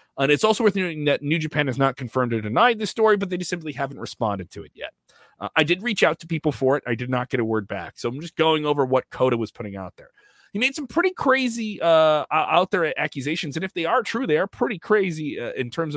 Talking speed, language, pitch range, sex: 270 wpm, English, 125-170 Hz, male